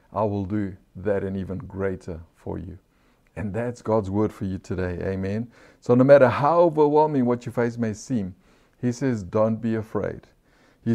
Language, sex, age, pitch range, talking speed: English, male, 60-79, 105-135 Hz, 180 wpm